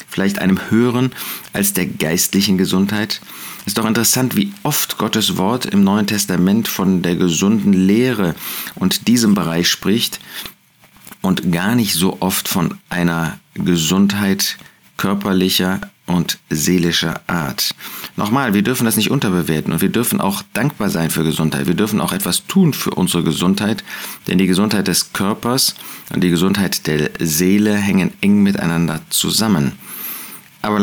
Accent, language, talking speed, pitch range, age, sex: German, German, 145 wpm, 90-120 Hz, 40-59, male